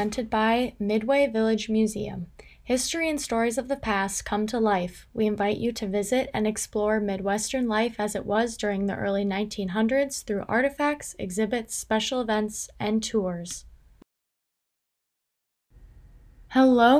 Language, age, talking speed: English, 20-39, 135 wpm